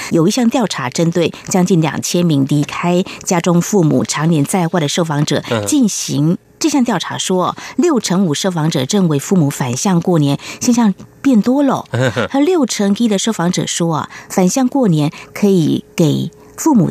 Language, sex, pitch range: Chinese, female, 165-235 Hz